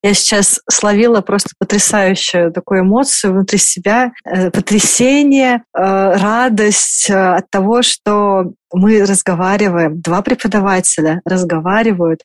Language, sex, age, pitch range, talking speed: Russian, female, 30-49, 195-245 Hz, 95 wpm